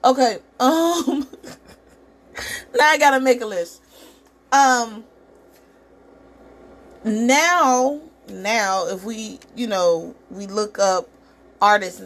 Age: 30-49